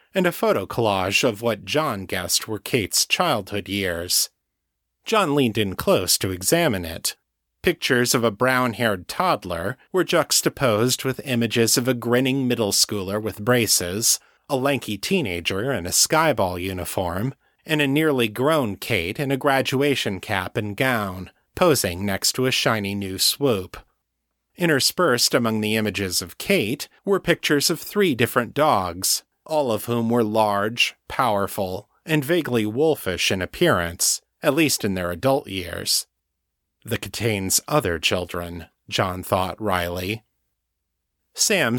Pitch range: 95-135 Hz